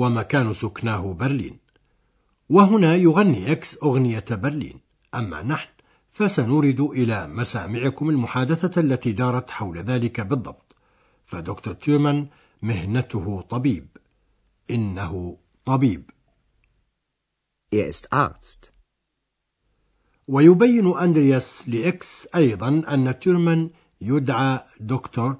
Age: 60-79